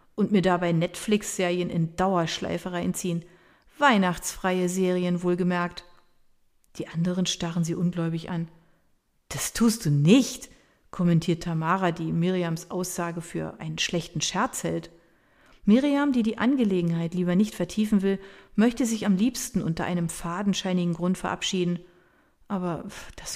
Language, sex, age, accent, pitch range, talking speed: German, female, 40-59, German, 170-210 Hz, 125 wpm